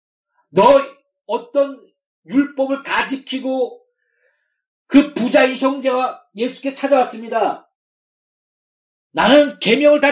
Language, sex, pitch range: Korean, male, 175-280 Hz